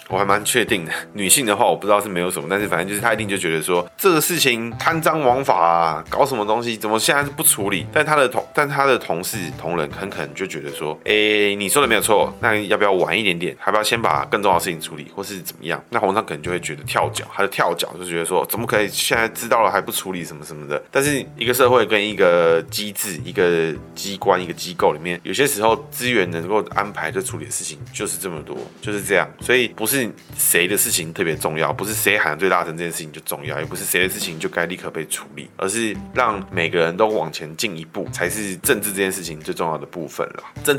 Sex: male